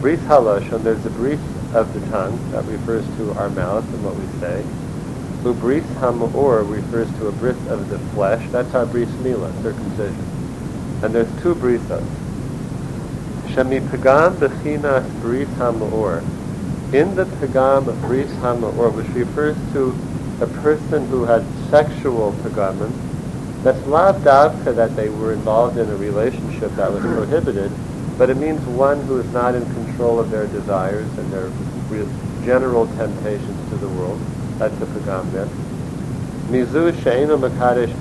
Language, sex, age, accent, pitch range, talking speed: English, male, 50-69, American, 115-140 Hz, 150 wpm